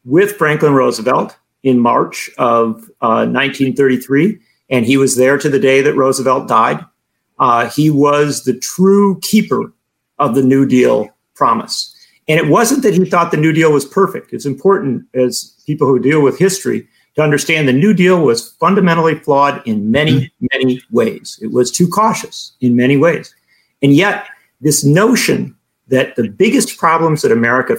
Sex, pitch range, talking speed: male, 130-185 Hz, 165 wpm